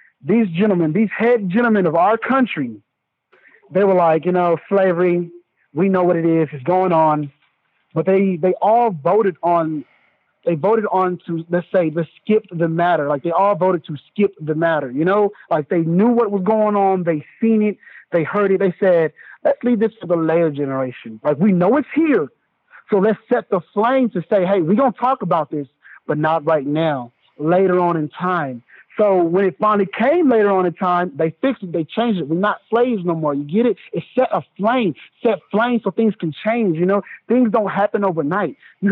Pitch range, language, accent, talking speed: 170-215 Hz, English, American, 210 wpm